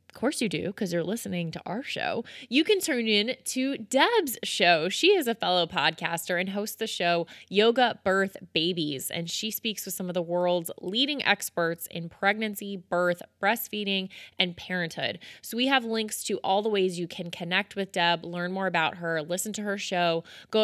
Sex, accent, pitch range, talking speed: female, American, 165-205 Hz, 195 wpm